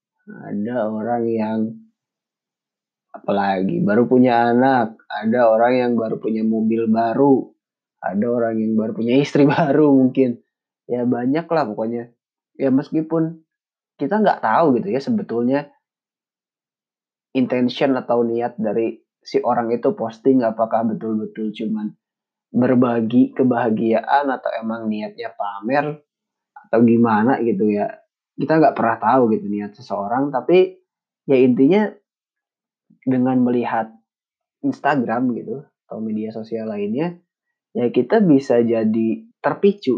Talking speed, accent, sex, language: 115 wpm, native, male, Indonesian